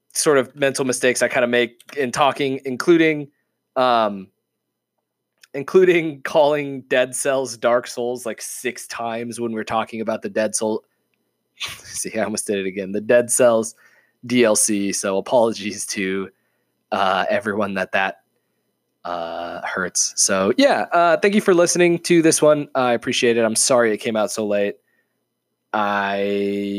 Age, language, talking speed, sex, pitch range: 20-39, English, 150 wpm, male, 100-140 Hz